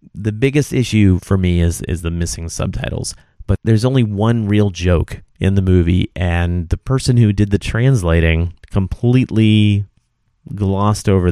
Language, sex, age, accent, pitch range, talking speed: English, male, 30-49, American, 85-110 Hz, 155 wpm